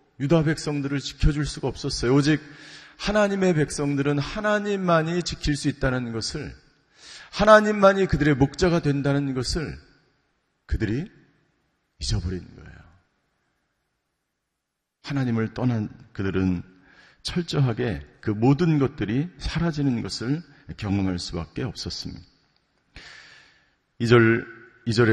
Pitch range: 105-140 Hz